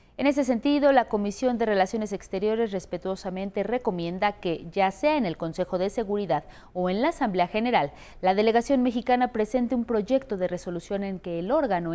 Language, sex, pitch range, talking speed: Spanish, female, 180-245 Hz, 175 wpm